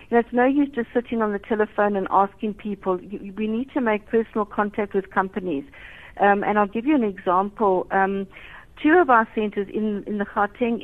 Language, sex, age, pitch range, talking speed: English, female, 60-79, 195-230 Hz, 195 wpm